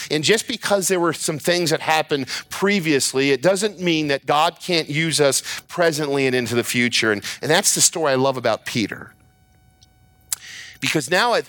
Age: 40-59